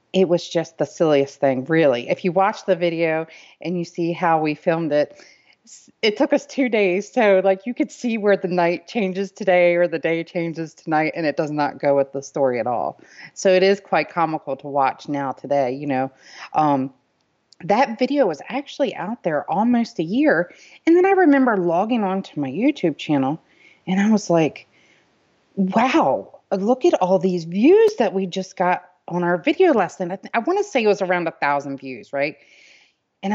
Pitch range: 155-205 Hz